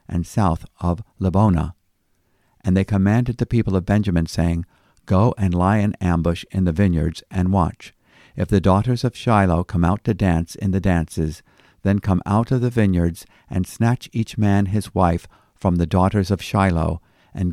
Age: 50-69